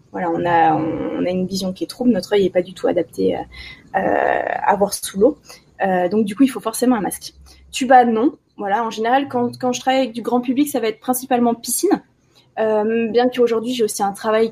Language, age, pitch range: French, 20-39, 200-245 Hz